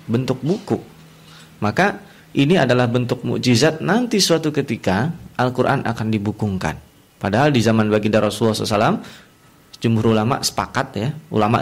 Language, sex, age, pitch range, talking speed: Indonesian, male, 30-49, 110-140 Hz, 130 wpm